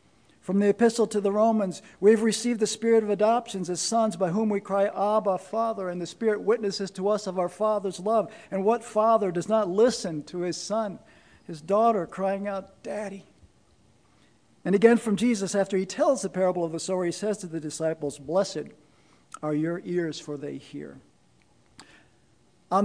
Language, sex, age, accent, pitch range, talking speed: English, male, 50-69, American, 175-220 Hz, 180 wpm